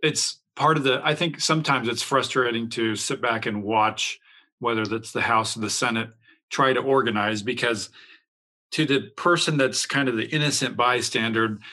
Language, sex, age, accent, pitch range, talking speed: English, male, 40-59, American, 120-150 Hz, 175 wpm